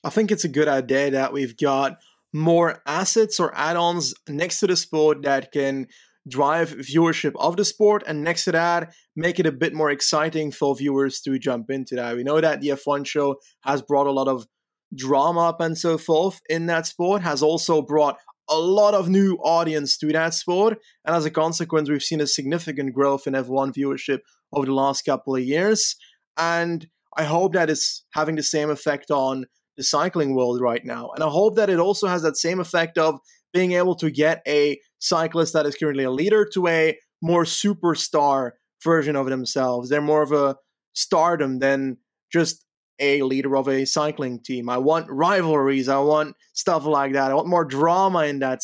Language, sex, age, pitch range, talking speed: English, male, 20-39, 140-170 Hz, 195 wpm